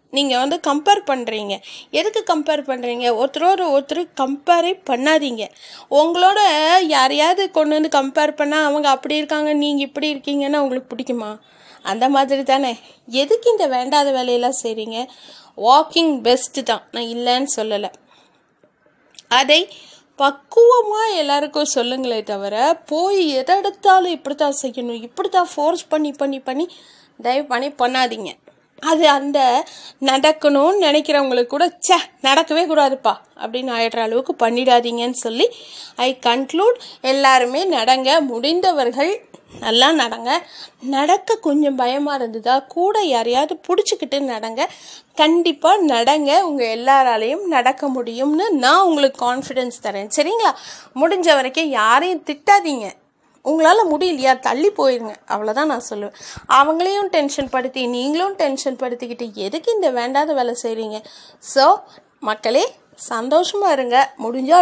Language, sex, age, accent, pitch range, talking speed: Tamil, female, 30-49, native, 250-320 Hz, 115 wpm